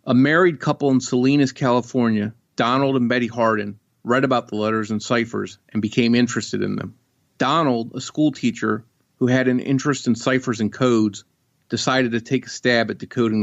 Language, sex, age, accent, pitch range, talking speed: English, male, 40-59, American, 115-135 Hz, 175 wpm